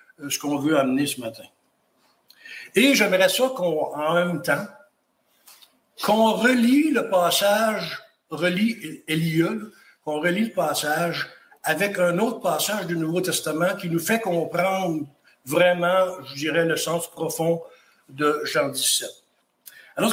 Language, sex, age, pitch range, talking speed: English, male, 60-79, 165-220 Hz, 130 wpm